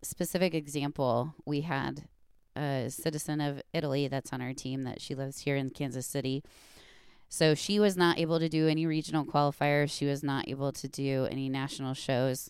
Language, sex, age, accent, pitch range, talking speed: English, female, 20-39, American, 125-150 Hz, 180 wpm